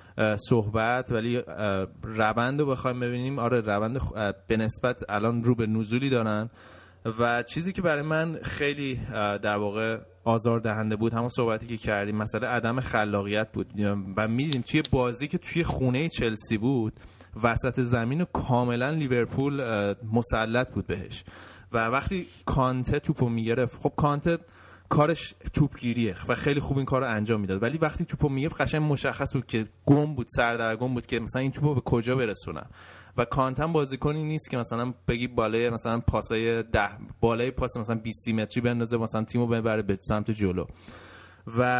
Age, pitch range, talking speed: 20-39, 110-135 Hz, 170 wpm